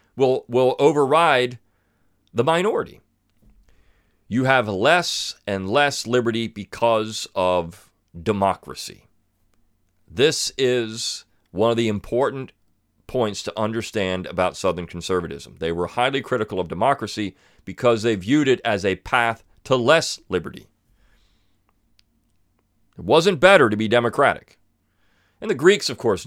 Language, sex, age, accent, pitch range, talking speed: English, male, 40-59, American, 95-125 Hz, 120 wpm